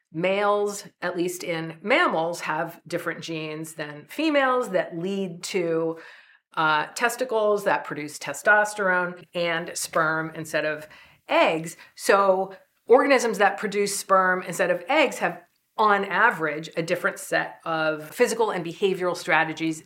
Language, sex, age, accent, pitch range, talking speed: English, female, 40-59, American, 165-200 Hz, 125 wpm